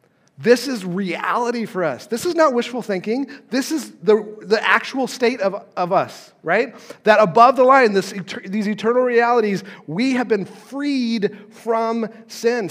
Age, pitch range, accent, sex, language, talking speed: 40-59, 165-220 Hz, American, male, English, 160 wpm